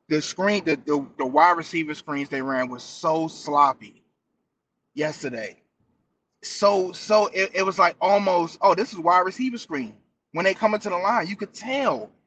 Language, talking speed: English, 175 wpm